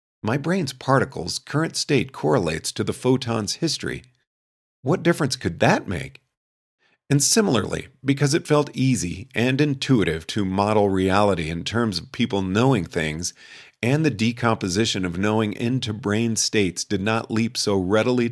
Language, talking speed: English, 145 wpm